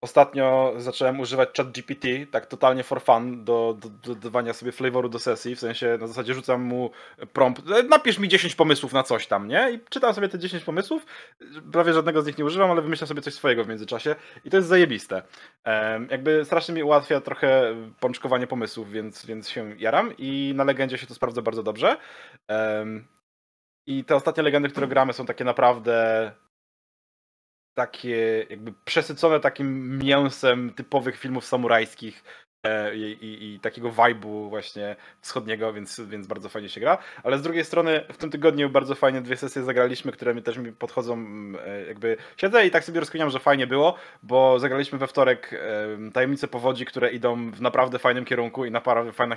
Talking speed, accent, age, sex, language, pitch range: 175 wpm, native, 20-39, male, Polish, 115-140 Hz